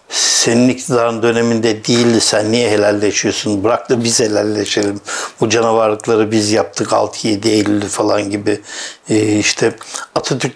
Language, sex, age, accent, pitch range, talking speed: Turkish, male, 60-79, native, 110-125 Hz, 120 wpm